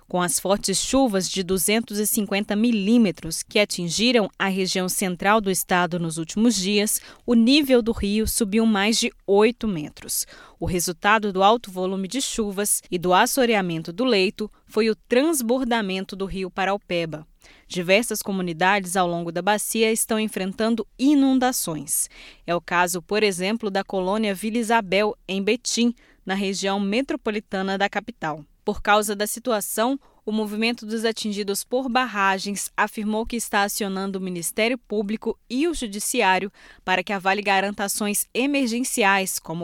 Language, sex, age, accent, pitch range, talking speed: Portuguese, female, 20-39, Brazilian, 185-225 Hz, 145 wpm